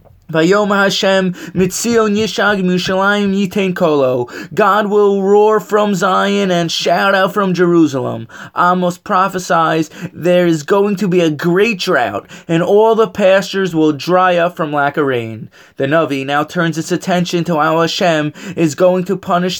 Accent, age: American, 20-39